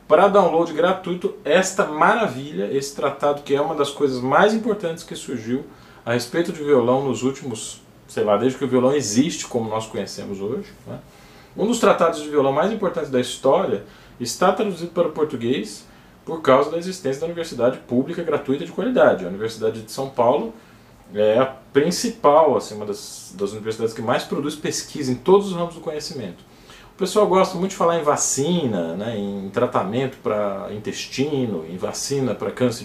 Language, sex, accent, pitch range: Portuguese, male, Brazilian, 120-170 Hz